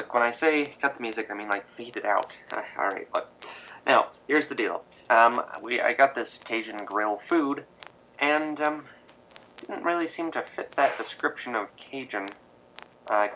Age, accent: 30-49, American